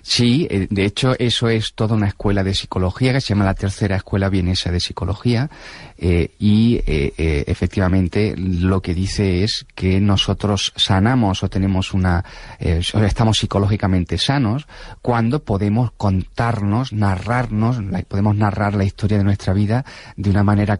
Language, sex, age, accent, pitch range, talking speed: Spanish, male, 30-49, Spanish, 95-110 Hz, 150 wpm